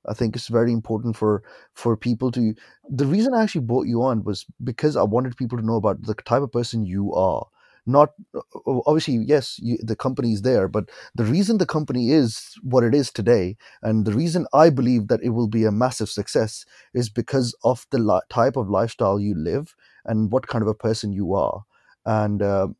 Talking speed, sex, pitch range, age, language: 210 wpm, male, 110-145 Hz, 30-49, English